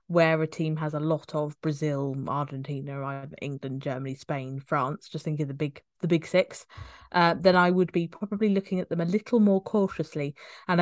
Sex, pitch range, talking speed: female, 155-180 Hz, 190 wpm